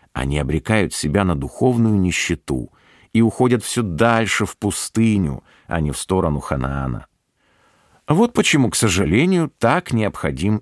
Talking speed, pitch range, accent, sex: 130 wpm, 80-115 Hz, native, male